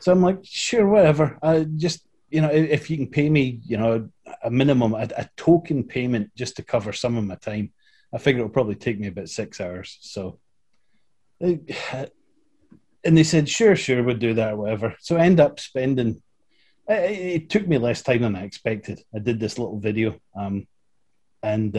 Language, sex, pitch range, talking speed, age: English, male, 110-135 Hz, 195 wpm, 30-49